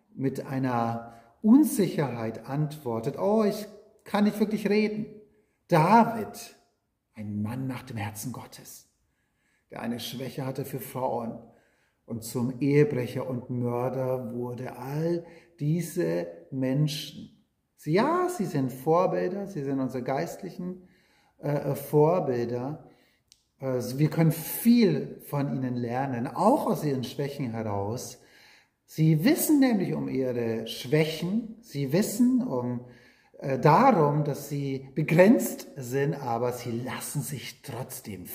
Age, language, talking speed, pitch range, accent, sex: 40-59, German, 110 wpm, 125-180 Hz, German, male